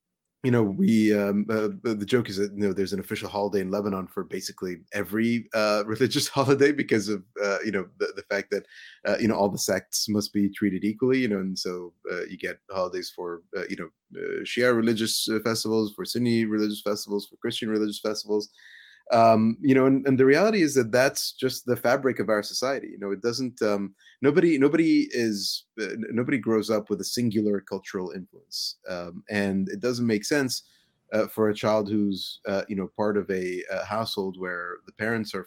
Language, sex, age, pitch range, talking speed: English, male, 30-49, 100-125 Hz, 205 wpm